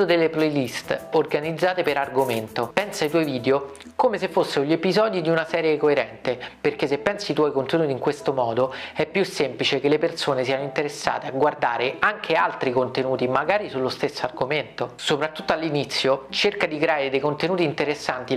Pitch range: 135-165 Hz